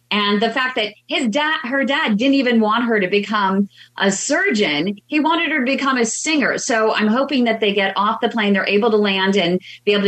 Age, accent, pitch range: 30-49, American, 190-230 Hz